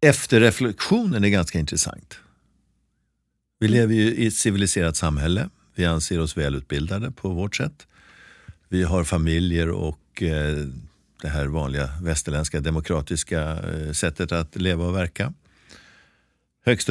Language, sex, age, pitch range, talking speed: Swedish, male, 50-69, 80-105 Hz, 130 wpm